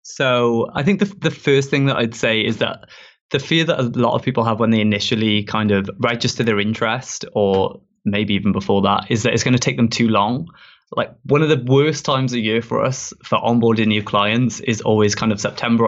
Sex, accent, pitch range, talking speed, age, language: male, British, 110-130 Hz, 230 wpm, 20-39, English